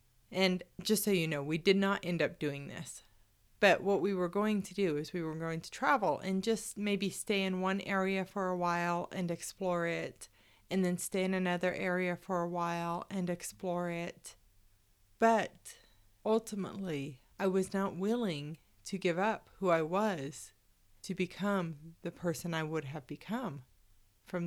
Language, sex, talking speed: English, female, 175 wpm